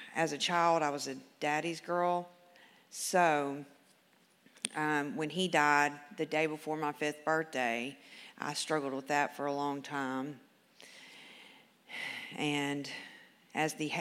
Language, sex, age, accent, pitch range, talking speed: English, female, 40-59, American, 140-155 Hz, 130 wpm